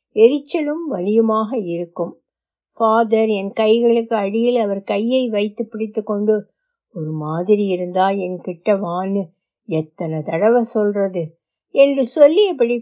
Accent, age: native, 60-79